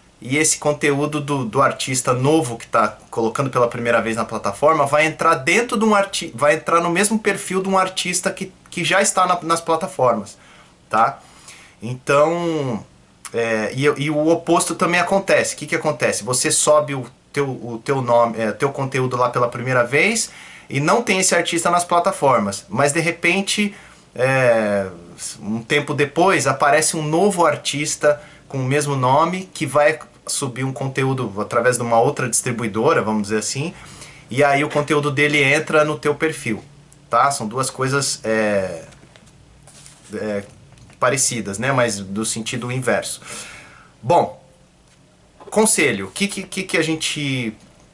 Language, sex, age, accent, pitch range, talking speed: Portuguese, male, 20-39, Brazilian, 120-165 Hz, 160 wpm